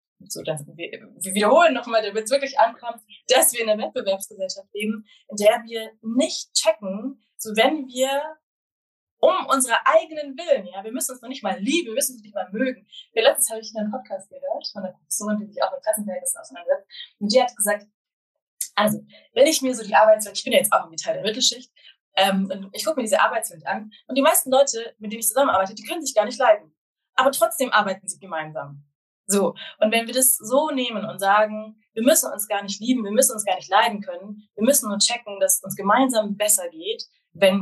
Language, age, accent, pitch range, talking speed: German, 20-39, German, 205-280 Hz, 220 wpm